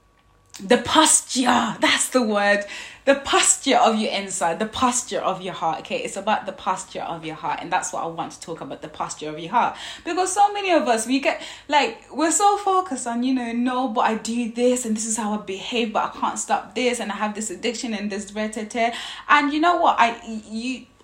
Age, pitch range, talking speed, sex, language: 20-39, 210-265 Hz, 230 wpm, female, English